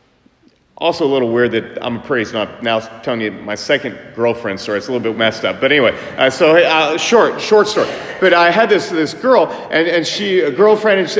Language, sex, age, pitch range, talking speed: English, male, 30-49, 115-165 Hz, 210 wpm